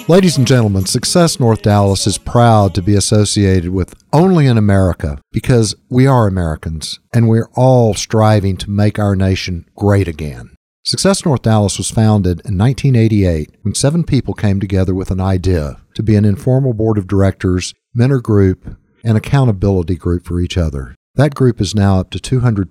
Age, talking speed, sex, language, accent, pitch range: 50-69, 175 wpm, male, English, American, 90-115 Hz